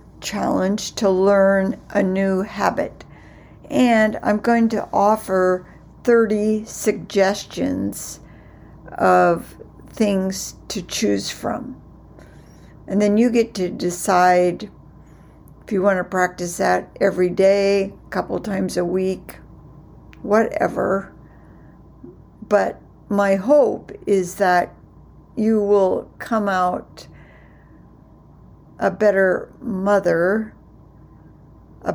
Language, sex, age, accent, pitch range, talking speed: English, female, 60-79, American, 180-215 Hz, 95 wpm